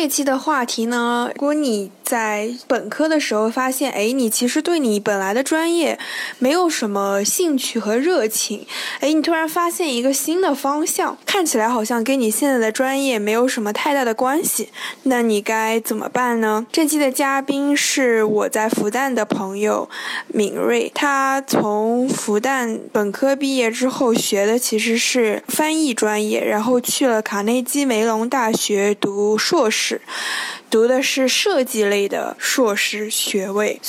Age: 10-29